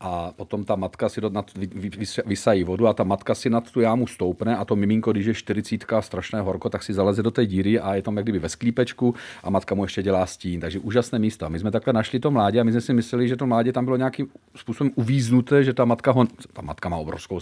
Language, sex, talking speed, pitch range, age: Czech, male, 255 wpm, 100-120 Hz, 40-59